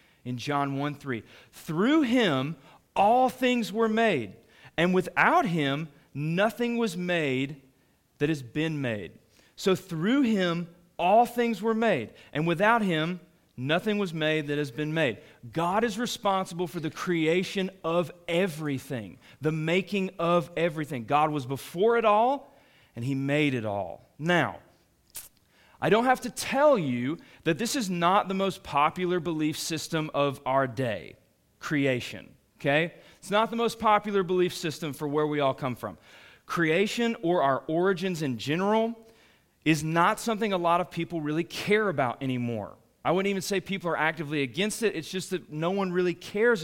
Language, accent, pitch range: English, American, 145-200 Hz